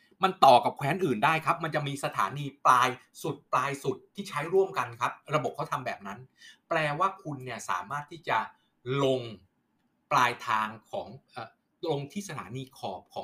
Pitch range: 110-145 Hz